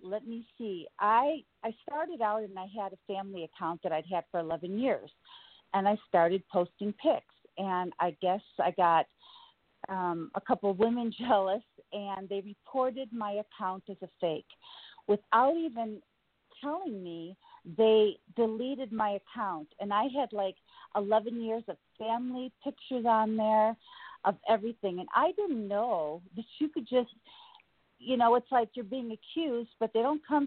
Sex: female